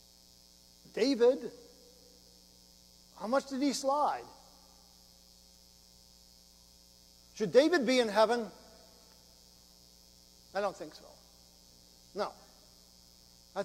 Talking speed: 75 wpm